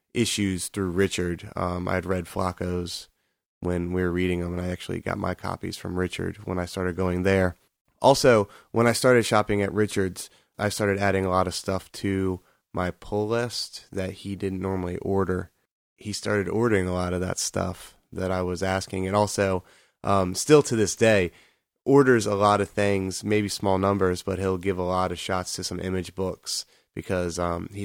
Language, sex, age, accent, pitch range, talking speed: English, male, 20-39, American, 90-100 Hz, 190 wpm